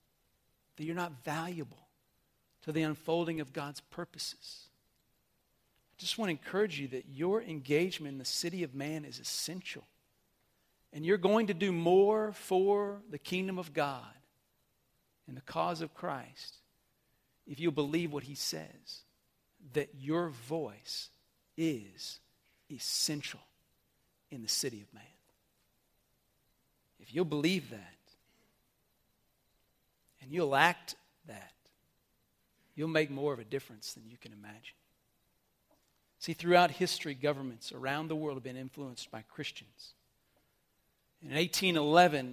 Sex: male